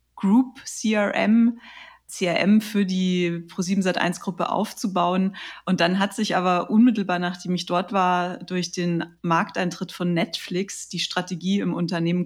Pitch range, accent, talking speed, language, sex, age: 180-205 Hz, German, 135 wpm, German, female, 30-49